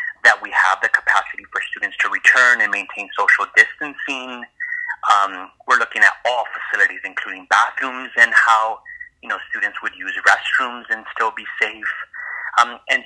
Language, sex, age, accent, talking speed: English, male, 30-49, American, 160 wpm